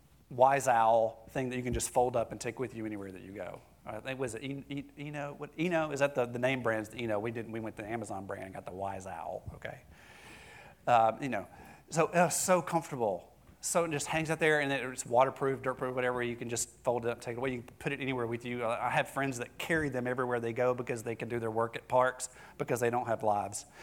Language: English